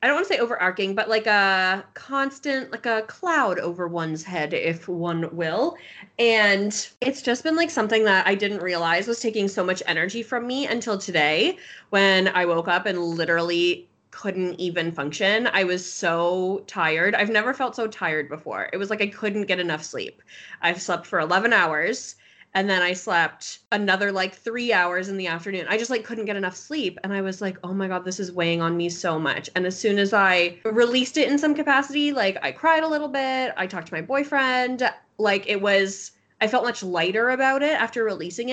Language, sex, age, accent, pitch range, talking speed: English, female, 20-39, American, 180-235 Hz, 210 wpm